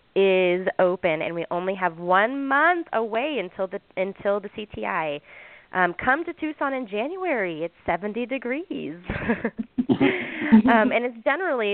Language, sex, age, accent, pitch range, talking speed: English, female, 20-39, American, 170-210 Hz, 140 wpm